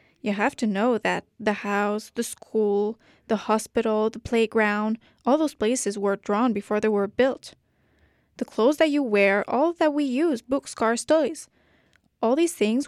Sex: female